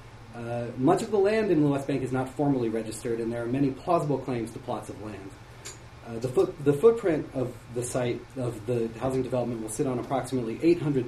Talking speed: 215 wpm